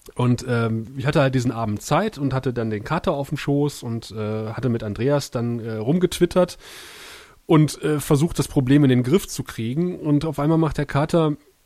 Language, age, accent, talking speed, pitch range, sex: German, 30-49, German, 205 wpm, 120-155 Hz, male